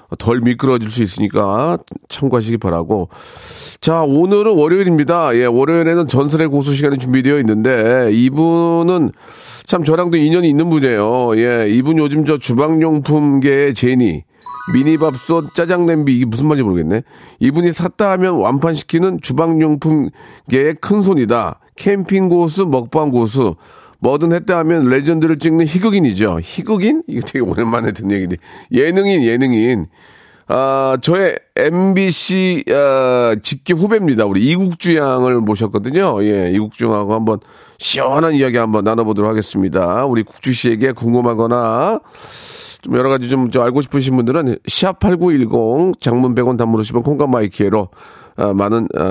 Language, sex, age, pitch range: Korean, male, 40-59, 115-165 Hz